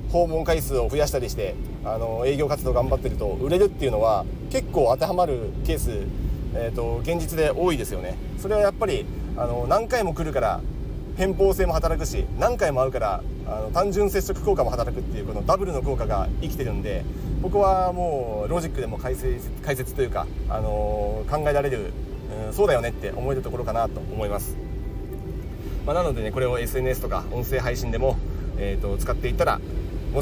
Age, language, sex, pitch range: 40-59, Japanese, male, 105-140 Hz